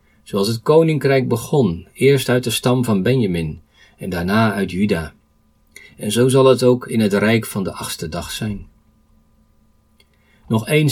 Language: Dutch